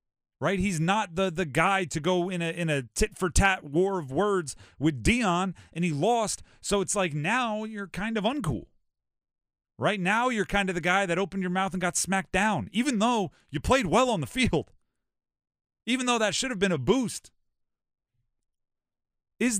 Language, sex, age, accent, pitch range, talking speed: English, male, 40-59, American, 135-195 Hz, 195 wpm